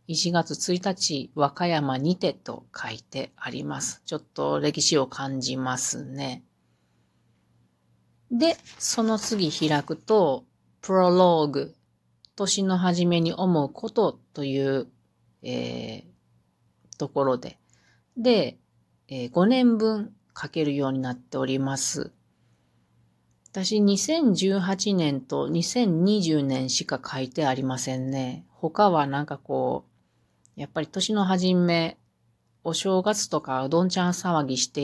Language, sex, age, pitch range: Japanese, female, 40-59, 130-180 Hz